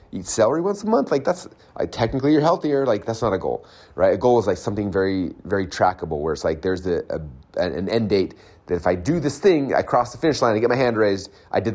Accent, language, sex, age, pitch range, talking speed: American, English, male, 30-49, 90-115 Hz, 265 wpm